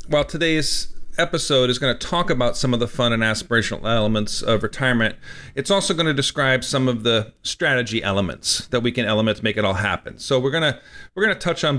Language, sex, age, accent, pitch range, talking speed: English, male, 40-59, American, 120-155 Hz, 225 wpm